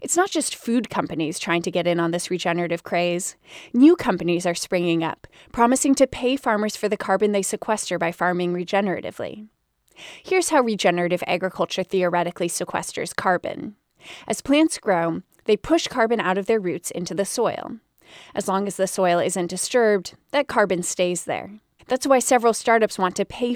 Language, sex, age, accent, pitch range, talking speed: English, female, 20-39, American, 175-240 Hz, 175 wpm